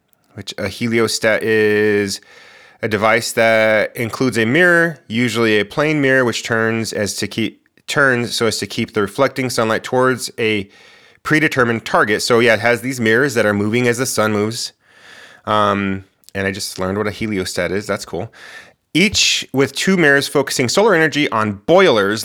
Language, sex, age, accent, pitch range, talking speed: English, male, 30-49, American, 105-130 Hz, 175 wpm